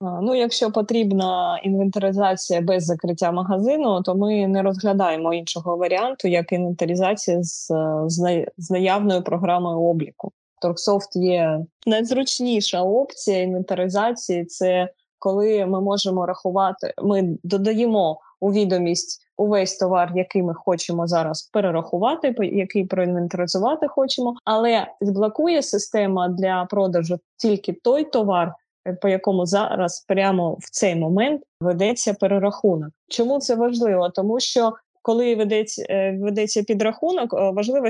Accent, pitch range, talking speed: native, 180-225 Hz, 115 wpm